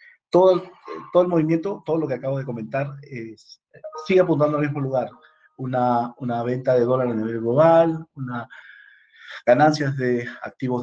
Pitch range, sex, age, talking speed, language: 115-140 Hz, male, 50-69, 155 wpm, Spanish